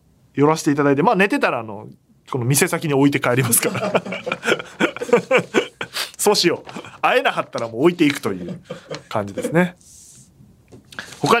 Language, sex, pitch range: Japanese, male, 130-205 Hz